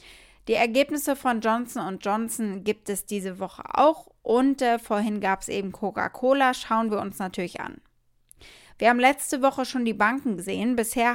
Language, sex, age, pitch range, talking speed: German, female, 20-39, 195-245 Hz, 165 wpm